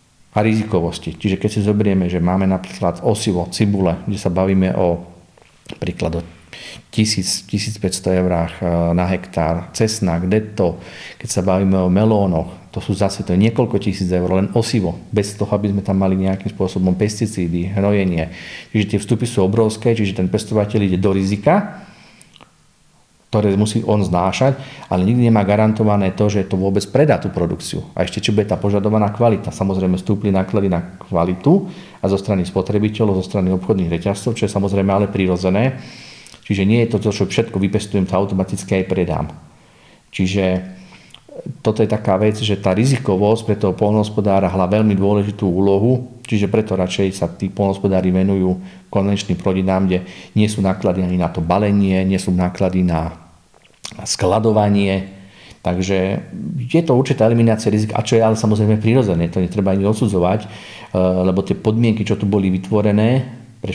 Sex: male